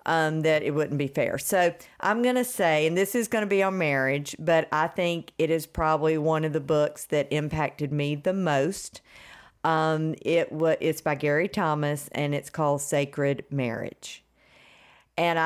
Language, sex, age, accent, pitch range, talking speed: English, female, 50-69, American, 145-170 Hz, 185 wpm